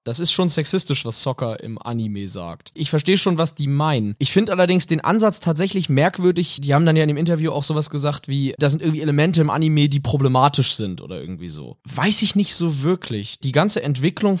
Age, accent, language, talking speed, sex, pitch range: 20-39, German, German, 220 wpm, male, 135-170 Hz